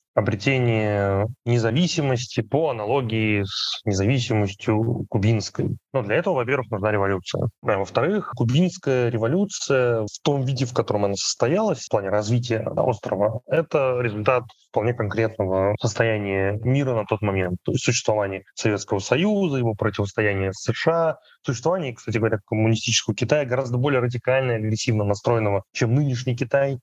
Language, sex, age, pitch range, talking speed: Russian, male, 20-39, 105-130 Hz, 135 wpm